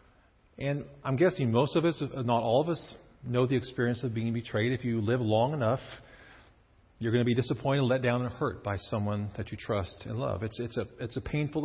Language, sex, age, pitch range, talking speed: English, male, 40-59, 100-145 Hz, 220 wpm